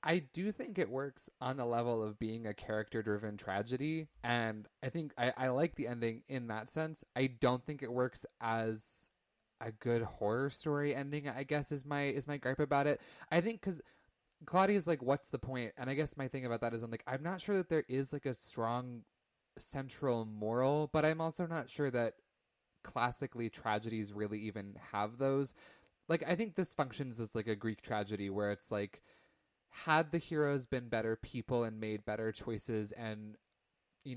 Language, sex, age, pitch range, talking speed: English, male, 20-39, 110-145 Hz, 200 wpm